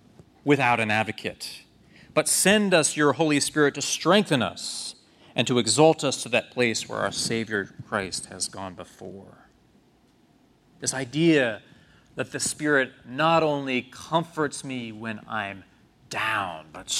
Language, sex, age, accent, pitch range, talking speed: English, male, 30-49, American, 120-145 Hz, 140 wpm